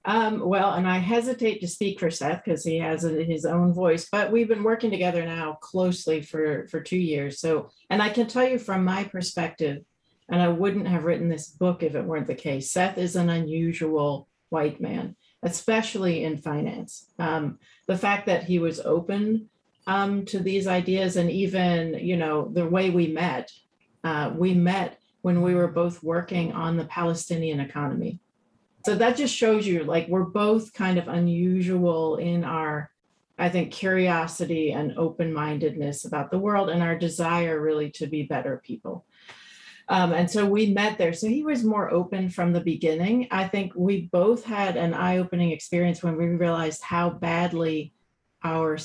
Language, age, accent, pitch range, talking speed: English, 40-59, American, 160-190 Hz, 175 wpm